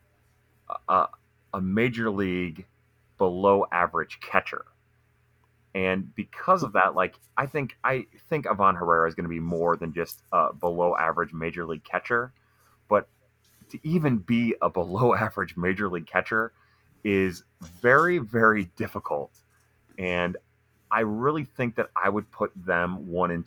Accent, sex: American, male